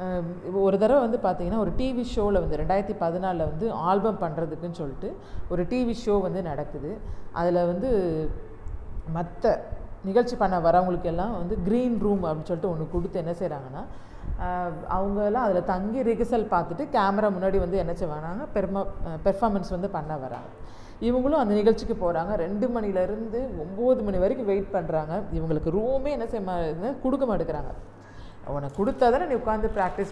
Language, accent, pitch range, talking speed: Tamil, native, 160-210 Hz, 135 wpm